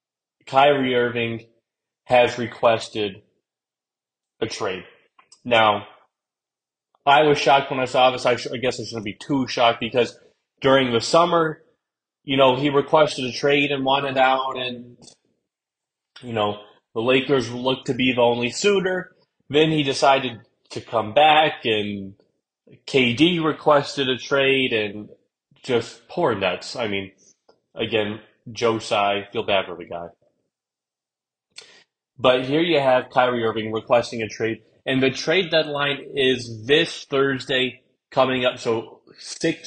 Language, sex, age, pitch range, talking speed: English, male, 30-49, 115-145 Hz, 135 wpm